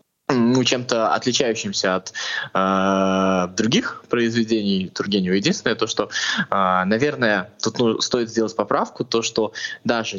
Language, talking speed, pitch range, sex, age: Russian, 125 wpm, 100-125 Hz, male, 20-39